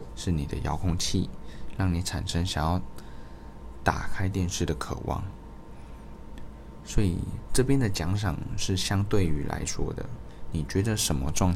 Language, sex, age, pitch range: Chinese, male, 20-39, 80-100 Hz